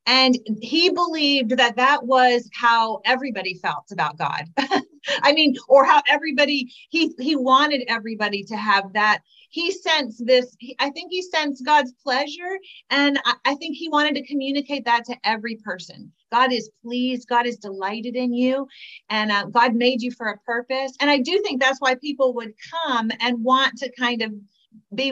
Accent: American